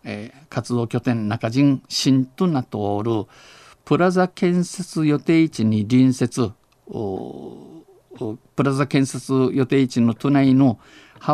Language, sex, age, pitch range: Japanese, male, 50-69, 120-140 Hz